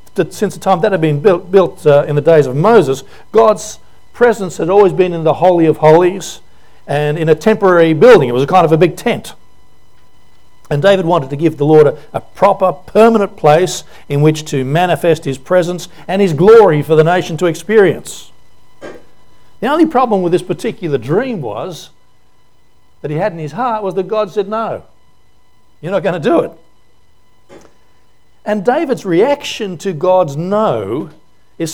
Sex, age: male, 60-79